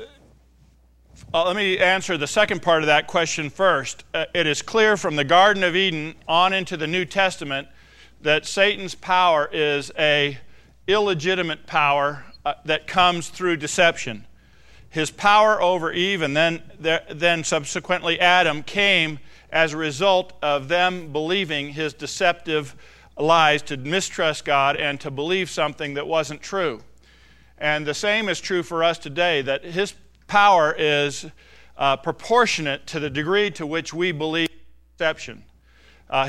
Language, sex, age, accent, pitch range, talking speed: English, male, 50-69, American, 145-180 Hz, 140 wpm